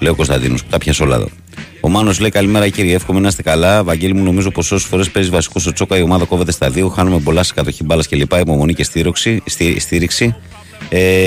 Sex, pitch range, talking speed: male, 80-95 Hz, 220 wpm